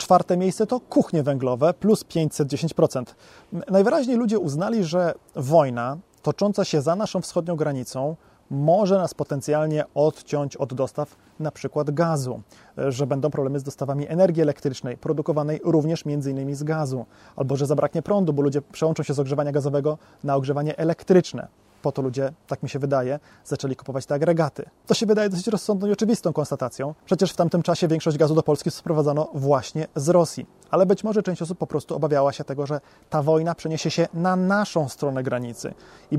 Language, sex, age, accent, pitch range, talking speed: Polish, male, 20-39, native, 145-175 Hz, 170 wpm